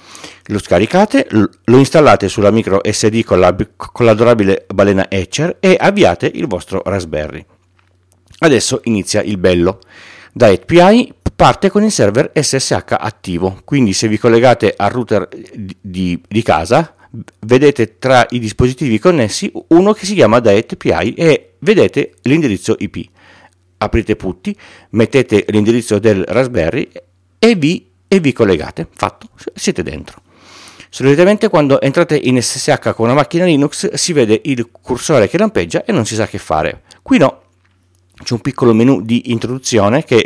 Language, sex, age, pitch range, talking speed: Italian, male, 50-69, 95-135 Hz, 145 wpm